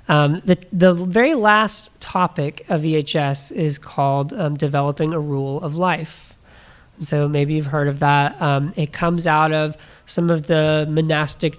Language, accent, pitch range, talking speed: English, American, 150-175 Hz, 165 wpm